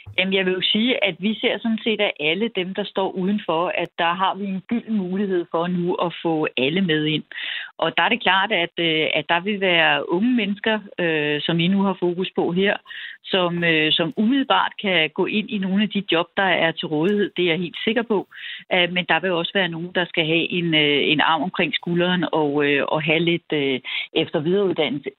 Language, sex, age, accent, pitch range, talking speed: Danish, female, 40-59, native, 155-195 Hz, 215 wpm